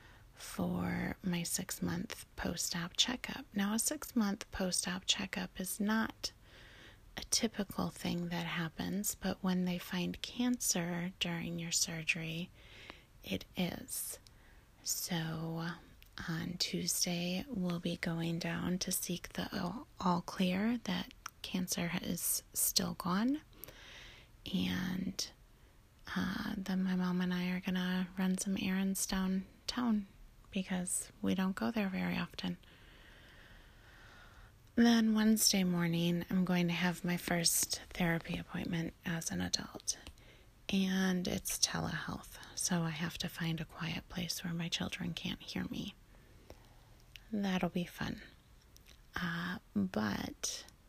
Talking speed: 120 wpm